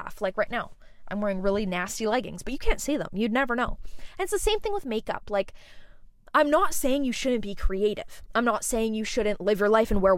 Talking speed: 240 wpm